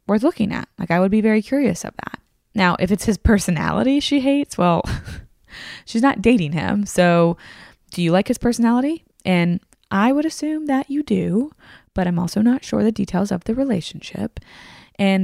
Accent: American